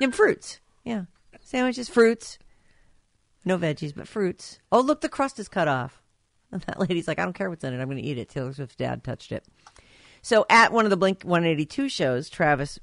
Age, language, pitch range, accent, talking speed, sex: 50-69, English, 140-200 Hz, American, 210 wpm, female